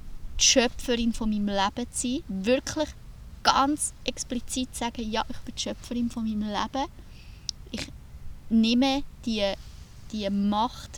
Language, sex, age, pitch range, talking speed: German, female, 20-39, 195-230 Hz, 120 wpm